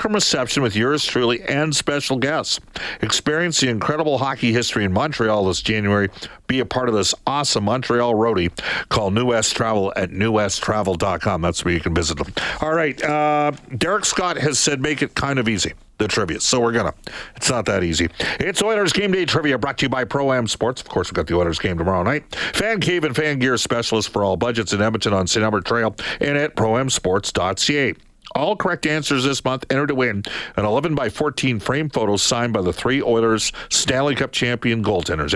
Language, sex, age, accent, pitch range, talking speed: English, male, 50-69, American, 100-145 Hz, 200 wpm